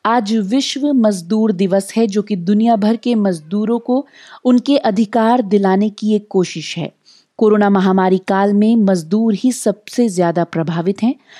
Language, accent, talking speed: Hindi, native, 155 wpm